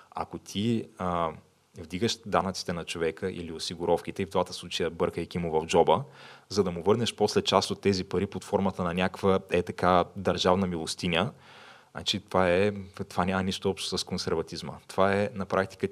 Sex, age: male, 20-39